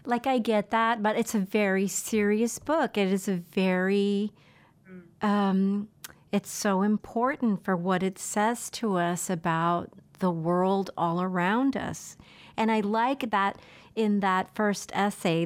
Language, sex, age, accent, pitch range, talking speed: English, female, 40-59, American, 190-230 Hz, 150 wpm